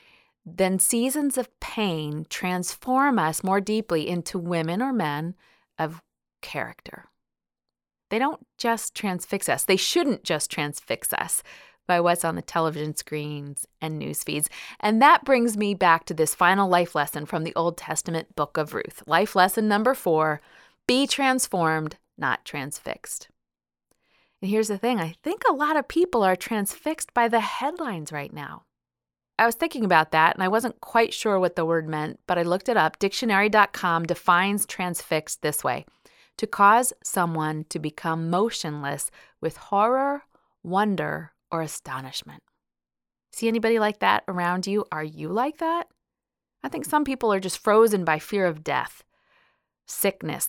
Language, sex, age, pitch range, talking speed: English, female, 30-49, 160-230 Hz, 155 wpm